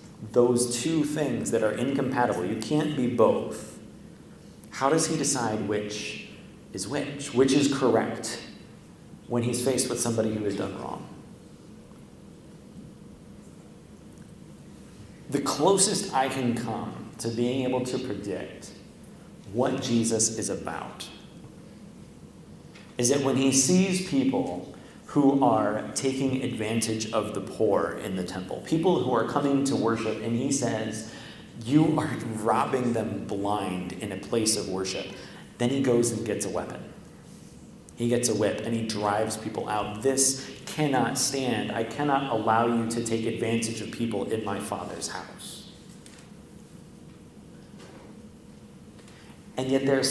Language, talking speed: English, 135 wpm